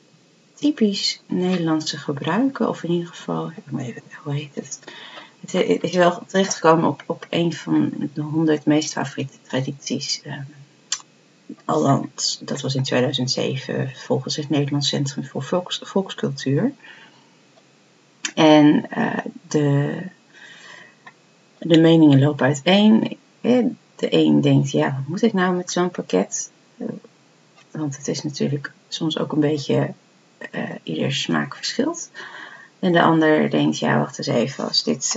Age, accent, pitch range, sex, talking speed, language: 40-59, Dutch, 140-180 Hz, female, 130 wpm, Dutch